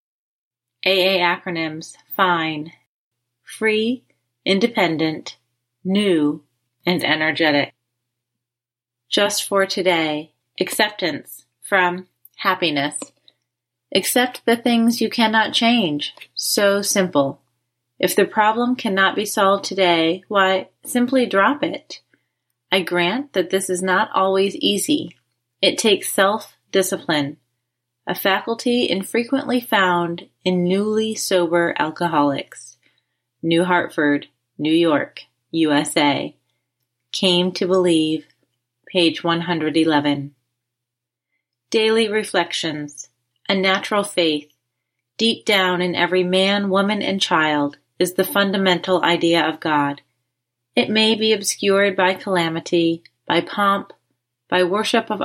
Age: 30-49